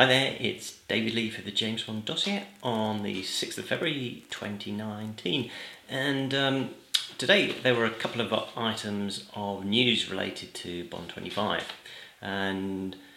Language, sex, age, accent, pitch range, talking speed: English, male, 30-49, British, 90-115 Hz, 145 wpm